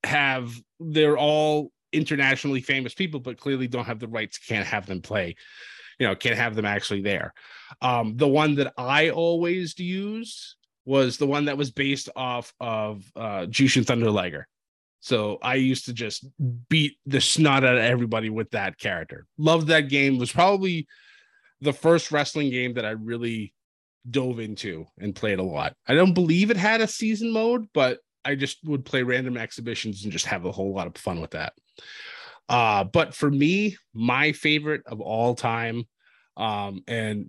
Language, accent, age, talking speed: English, American, 20-39, 180 wpm